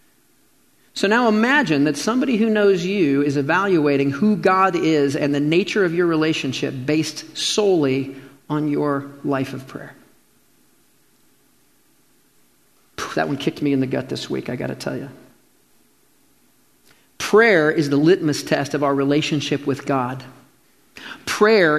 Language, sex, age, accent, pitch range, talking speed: English, male, 40-59, American, 145-210 Hz, 140 wpm